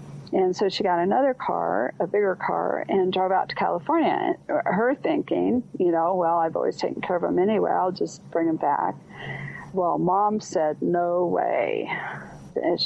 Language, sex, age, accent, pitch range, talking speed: English, female, 50-69, American, 165-195 Hz, 175 wpm